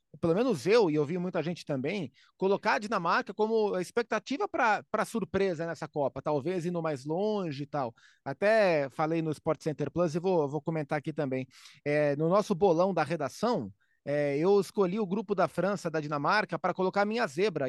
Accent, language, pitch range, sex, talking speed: Brazilian, Portuguese, 165-230 Hz, male, 185 wpm